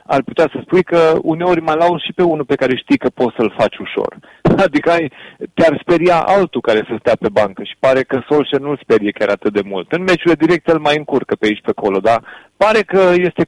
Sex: male